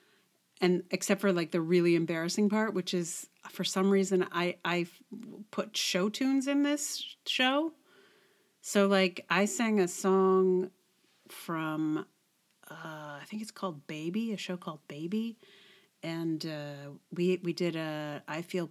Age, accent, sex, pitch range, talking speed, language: 30-49, American, female, 160-195 Hz, 150 wpm, English